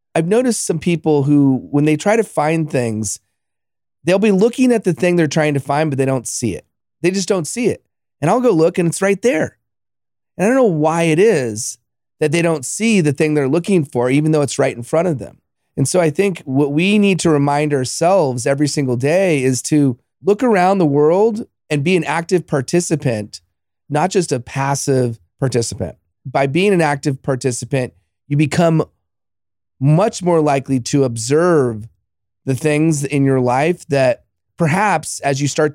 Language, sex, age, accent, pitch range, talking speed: English, male, 30-49, American, 120-165 Hz, 190 wpm